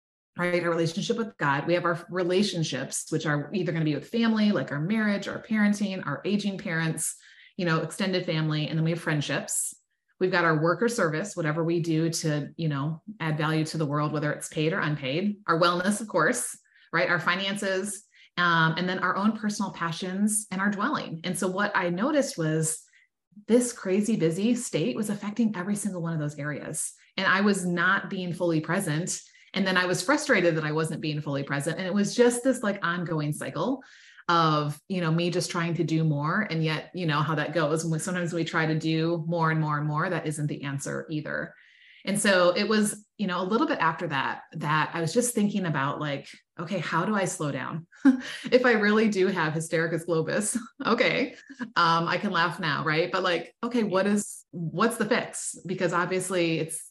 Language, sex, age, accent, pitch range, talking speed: English, female, 30-49, American, 160-205 Hz, 210 wpm